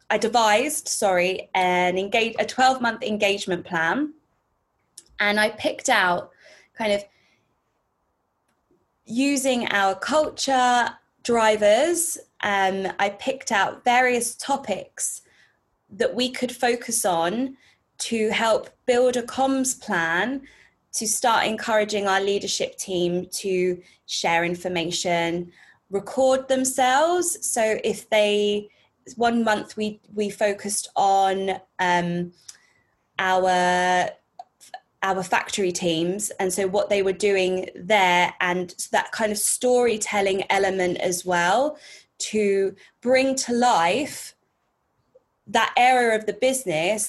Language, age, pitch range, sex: English, 20-39, 185-245 Hz, female